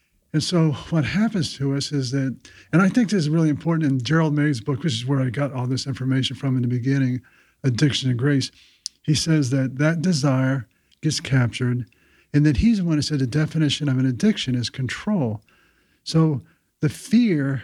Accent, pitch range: American, 130-160 Hz